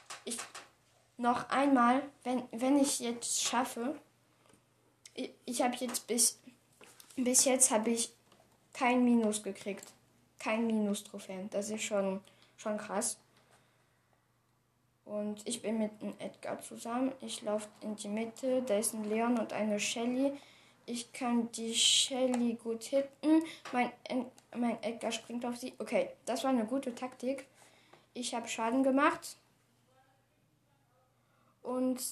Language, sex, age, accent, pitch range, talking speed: German, female, 10-29, German, 210-250 Hz, 125 wpm